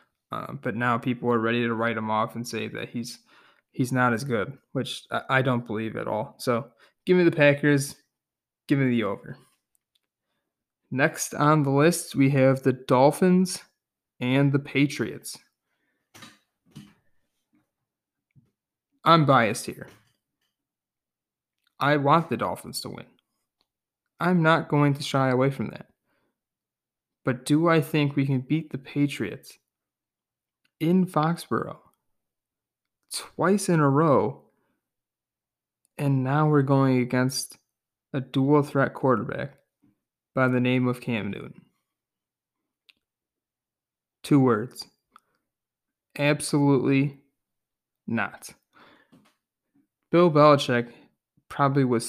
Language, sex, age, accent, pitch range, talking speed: English, male, 20-39, American, 120-145 Hz, 115 wpm